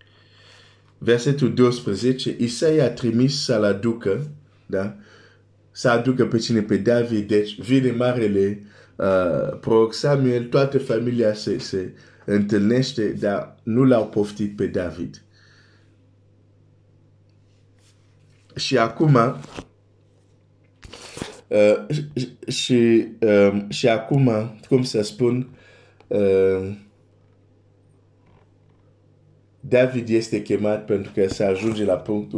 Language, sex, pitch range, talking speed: Romanian, male, 100-120 Hz, 90 wpm